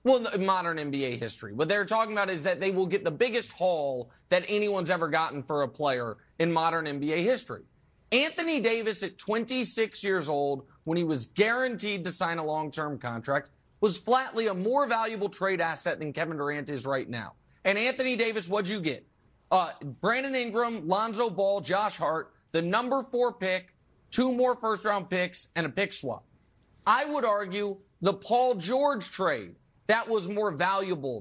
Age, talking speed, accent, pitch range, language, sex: 30-49, 175 wpm, American, 160-220 Hz, English, male